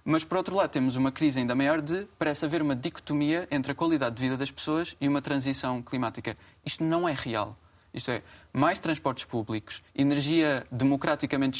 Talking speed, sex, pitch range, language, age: 185 wpm, male, 125-160 Hz, Portuguese, 20-39